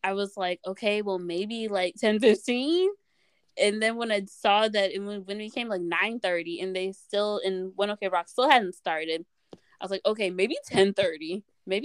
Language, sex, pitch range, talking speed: English, female, 175-210 Hz, 180 wpm